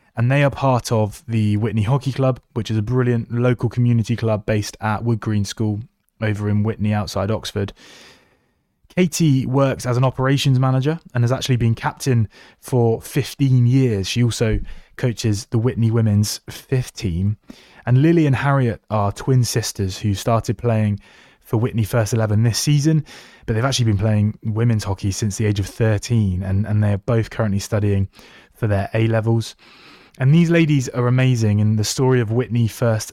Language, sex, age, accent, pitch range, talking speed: English, male, 20-39, British, 105-125 Hz, 175 wpm